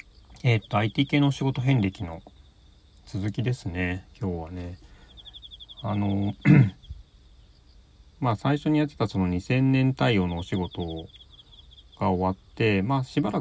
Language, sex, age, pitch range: Japanese, male, 40-59, 90-110 Hz